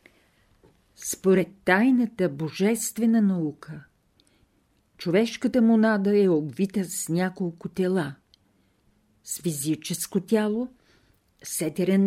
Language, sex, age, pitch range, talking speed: Bulgarian, female, 50-69, 160-215 Hz, 75 wpm